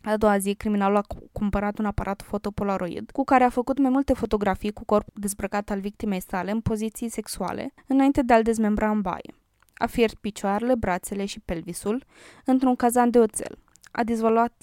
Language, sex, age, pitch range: Romanian, female, 20-39, 200-235 Hz